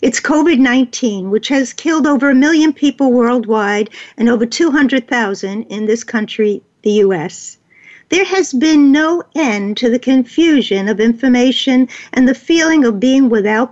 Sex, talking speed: female, 150 wpm